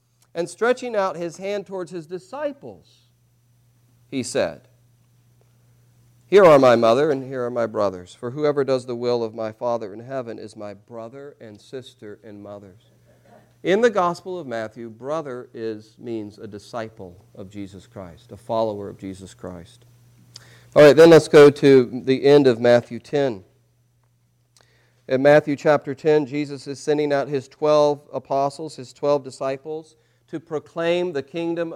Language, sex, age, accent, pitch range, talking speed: English, male, 40-59, American, 120-165 Hz, 155 wpm